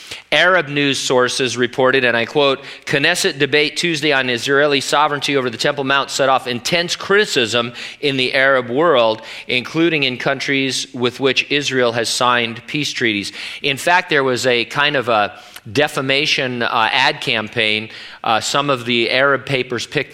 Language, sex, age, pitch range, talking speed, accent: English, male, 40-59, 120-145 Hz, 160 wpm, American